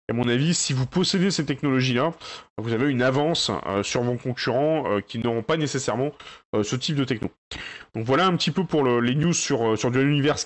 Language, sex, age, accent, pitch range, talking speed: French, male, 20-39, French, 125-175 Hz, 220 wpm